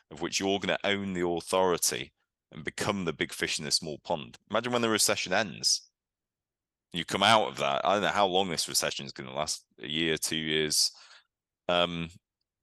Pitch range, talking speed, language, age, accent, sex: 70-90 Hz, 205 wpm, English, 30-49, British, male